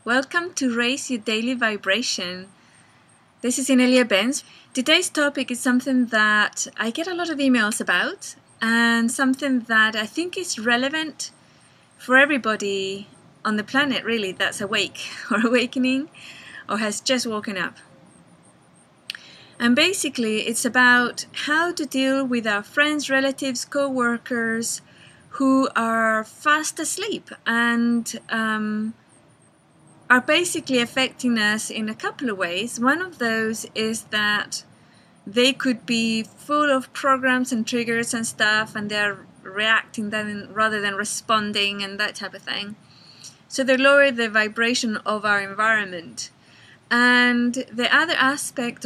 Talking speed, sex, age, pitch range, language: 135 wpm, female, 20-39, 215-265 Hz, English